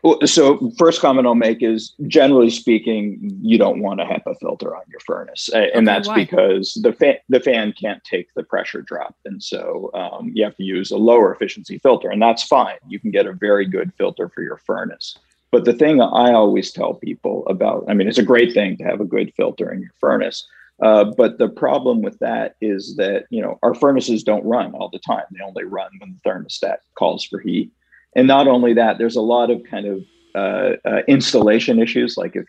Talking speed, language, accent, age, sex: 215 wpm, English, American, 40-59, male